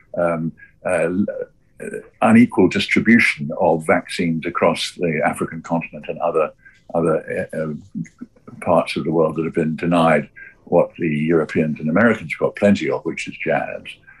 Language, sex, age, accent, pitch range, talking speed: English, male, 60-79, British, 80-105 Hz, 140 wpm